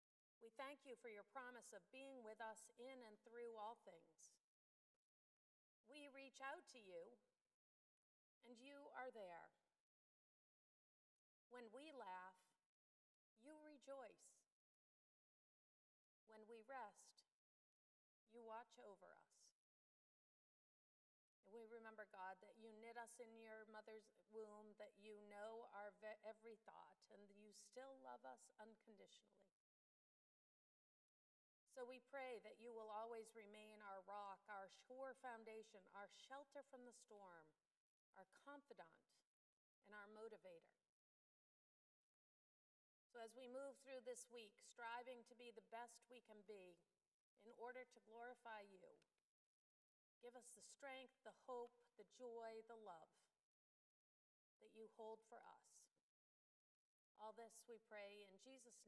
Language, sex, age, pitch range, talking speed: English, female, 40-59, 210-250 Hz, 125 wpm